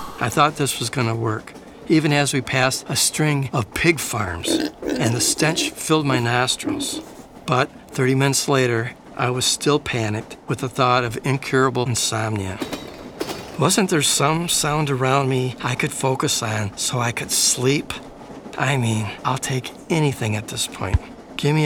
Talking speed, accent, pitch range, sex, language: 160 wpm, American, 110-140 Hz, male, English